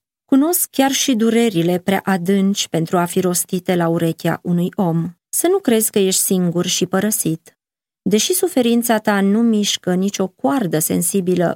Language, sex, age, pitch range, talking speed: Romanian, female, 30-49, 175-225 Hz, 160 wpm